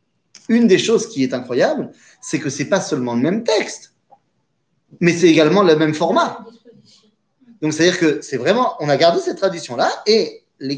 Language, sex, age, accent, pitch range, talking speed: French, male, 30-49, French, 135-220 Hz, 185 wpm